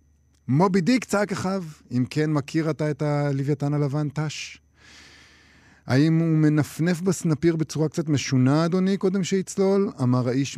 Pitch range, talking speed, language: 125-165 Hz, 135 wpm, Hebrew